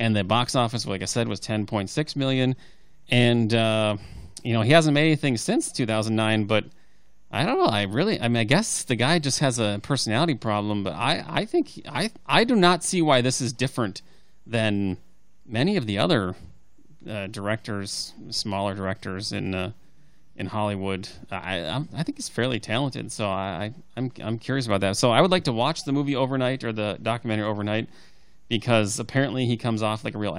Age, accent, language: 30-49, American, English